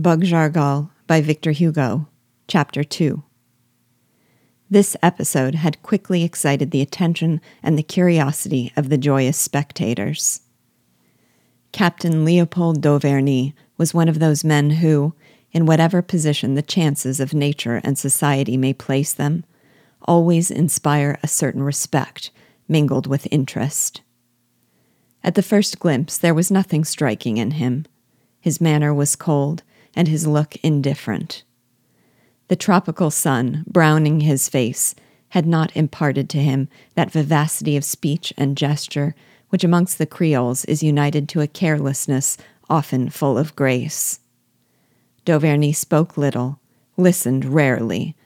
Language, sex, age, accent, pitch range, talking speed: English, female, 40-59, American, 135-165 Hz, 130 wpm